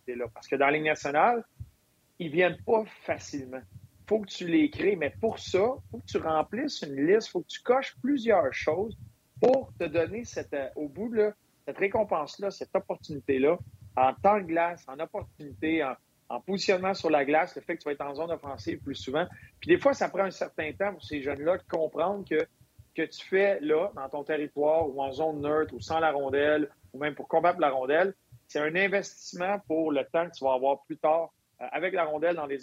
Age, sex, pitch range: 40-59, male, 140-175 Hz